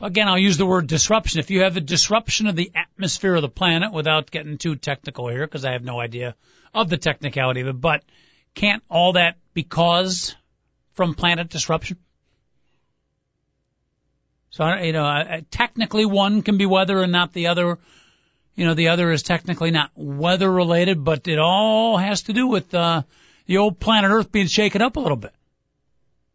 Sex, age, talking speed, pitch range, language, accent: male, 50-69, 185 wpm, 165-205 Hz, English, American